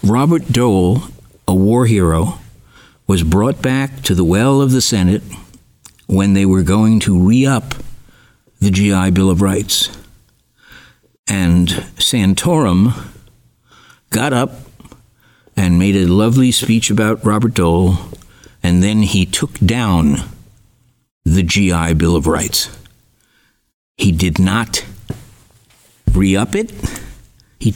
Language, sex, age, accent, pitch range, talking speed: English, male, 60-79, American, 95-125 Hz, 115 wpm